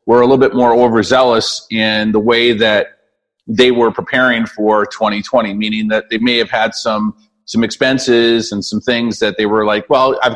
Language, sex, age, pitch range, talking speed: English, male, 40-59, 105-130 Hz, 190 wpm